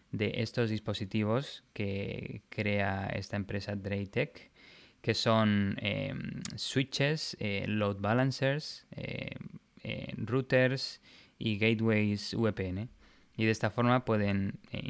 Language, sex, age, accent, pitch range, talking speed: Spanish, male, 20-39, Spanish, 105-120 Hz, 110 wpm